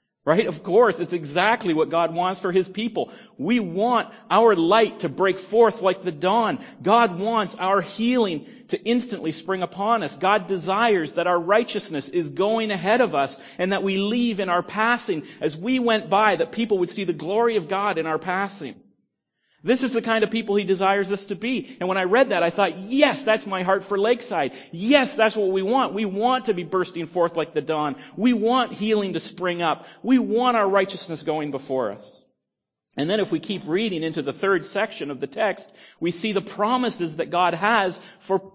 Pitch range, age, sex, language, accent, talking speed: 175-225 Hz, 40-59, male, English, American, 210 wpm